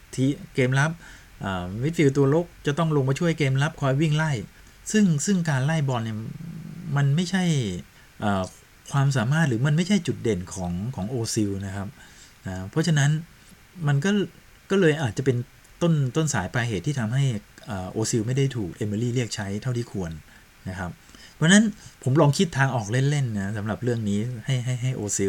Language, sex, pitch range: Thai, male, 100-135 Hz